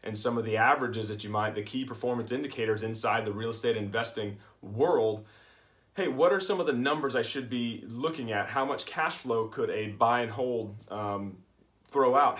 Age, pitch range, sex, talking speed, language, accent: 30-49, 105-125 Hz, male, 205 wpm, English, American